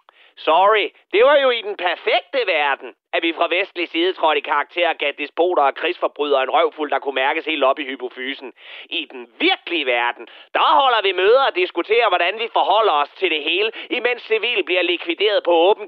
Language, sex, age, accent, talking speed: Danish, male, 30-49, native, 195 wpm